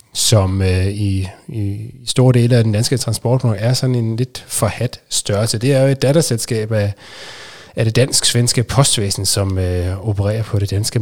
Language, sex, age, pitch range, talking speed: Danish, male, 30-49, 105-130 Hz, 175 wpm